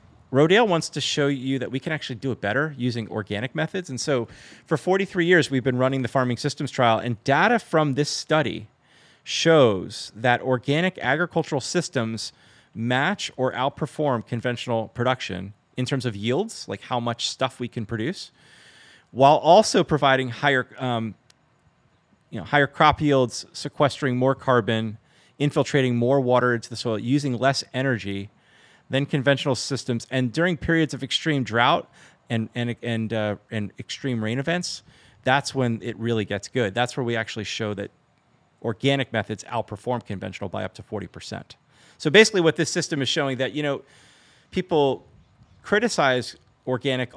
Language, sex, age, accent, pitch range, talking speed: English, male, 30-49, American, 115-145 Hz, 160 wpm